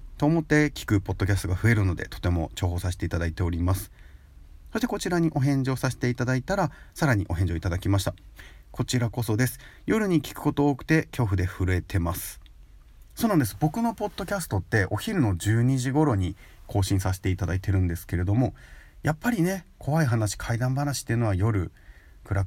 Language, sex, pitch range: Japanese, male, 85-130 Hz